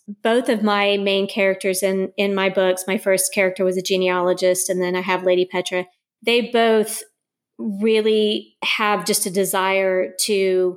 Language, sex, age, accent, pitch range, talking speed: English, female, 30-49, American, 185-210 Hz, 160 wpm